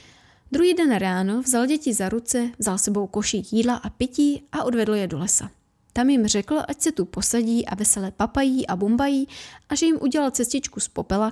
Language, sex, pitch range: Czech, female, 205-265 Hz